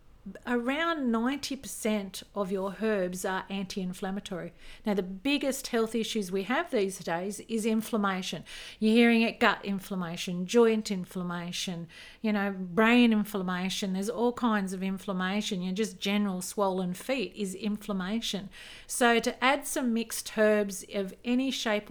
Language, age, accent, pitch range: English, 40-59, Australian, 195-235 Hz